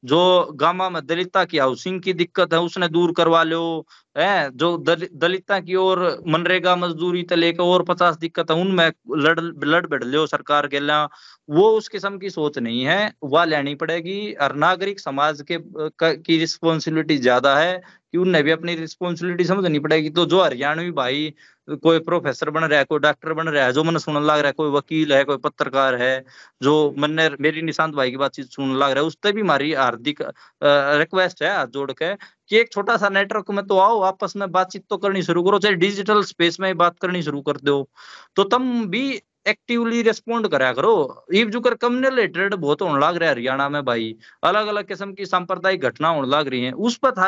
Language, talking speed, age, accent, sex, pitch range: Hindi, 160 wpm, 20-39, native, male, 150-190 Hz